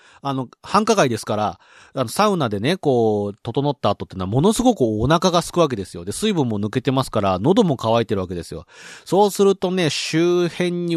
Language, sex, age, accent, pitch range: Japanese, male, 40-59, native, 115-165 Hz